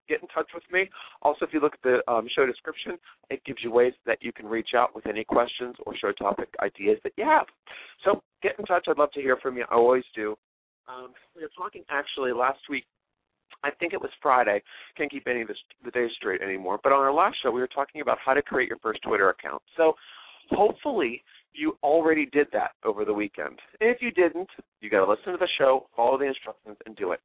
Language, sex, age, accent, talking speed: English, male, 40-59, American, 235 wpm